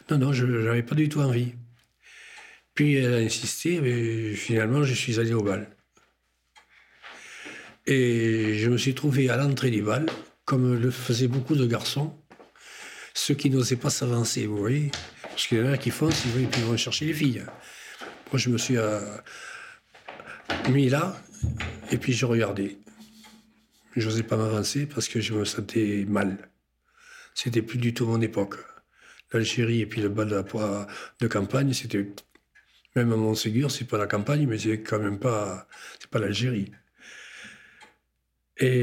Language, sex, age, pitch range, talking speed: French, male, 60-79, 105-130 Hz, 170 wpm